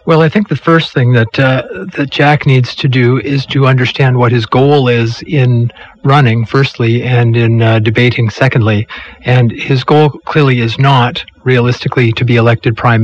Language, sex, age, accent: English, male, 40-59, American